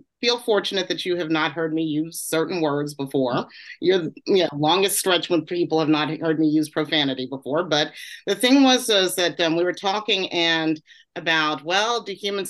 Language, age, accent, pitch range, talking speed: English, 40-59, American, 150-185 Hz, 195 wpm